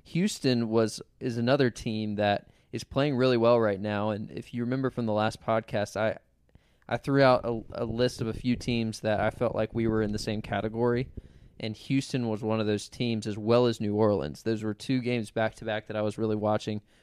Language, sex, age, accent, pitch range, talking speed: English, male, 20-39, American, 105-120 Hz, 230 wpm